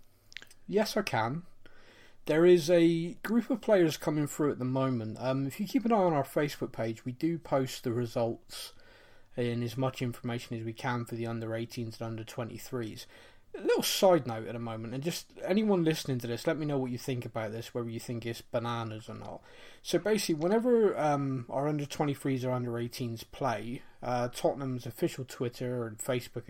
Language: English